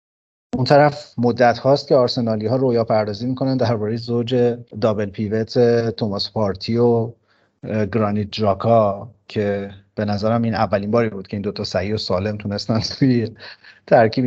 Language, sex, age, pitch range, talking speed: Persian, male, 40-59, 100-120 Hz, 145 wpm